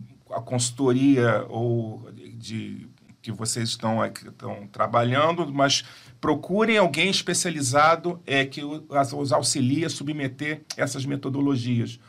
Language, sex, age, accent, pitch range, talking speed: Portuguese, male, 40-59, Brazilian, 125-145 Hz, 110 wpm